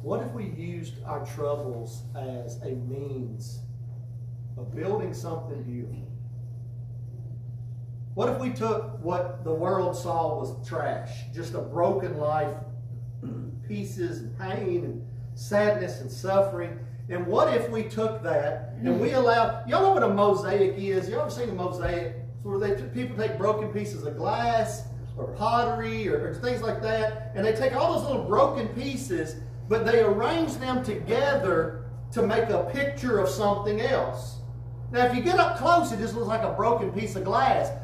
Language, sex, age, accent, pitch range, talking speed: English, male, 40-59, American, 120-190 Hz, 165 wpm